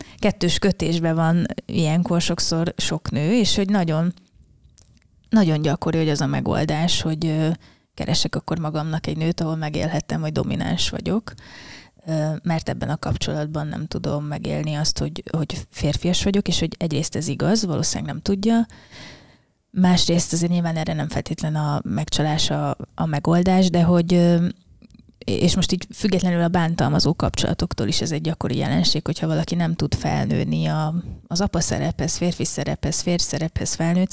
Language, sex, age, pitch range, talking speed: Hungarian, female, 20-39, 155-180 Hz, 150 wpm